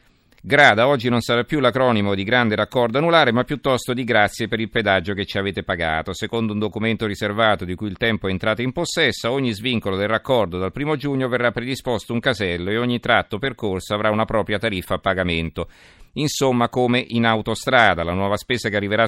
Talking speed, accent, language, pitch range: 200 wpm, native, Italian, 95-120 Hz